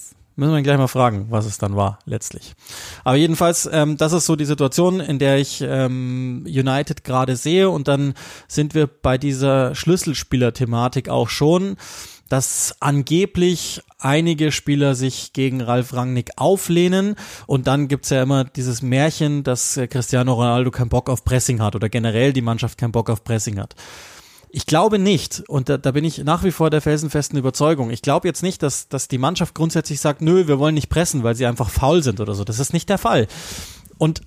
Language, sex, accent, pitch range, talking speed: German, male, German, 125-170 Hz, 190 wpm